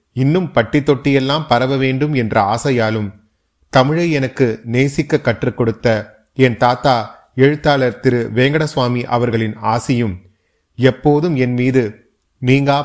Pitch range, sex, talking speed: 110-130 Hz, male, 105 wpm